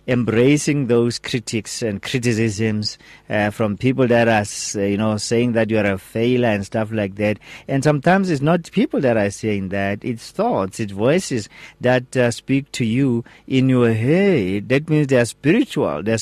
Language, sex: English, male